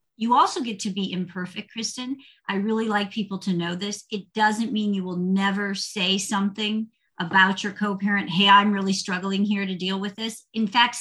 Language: English